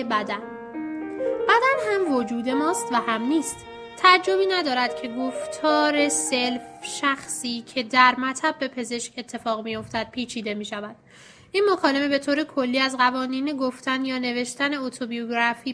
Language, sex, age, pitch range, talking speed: Persian, female, 10-29, 230-280 Hz, 140 wpm